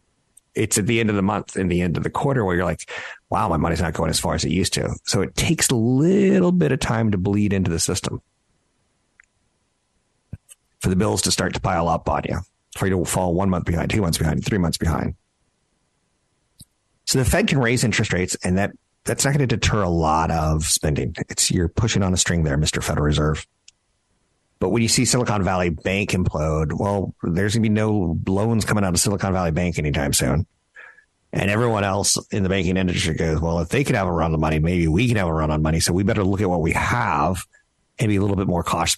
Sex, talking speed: male, 235 wpm